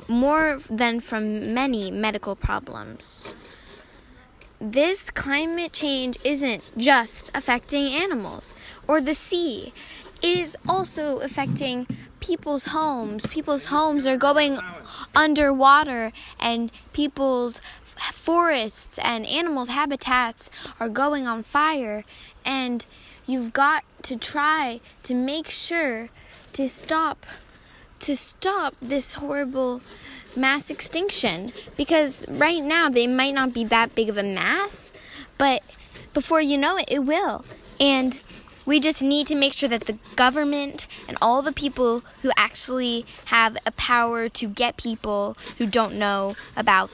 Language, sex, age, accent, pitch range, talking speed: English, female, 10-29, American, 220-285 Hz, 125 wpm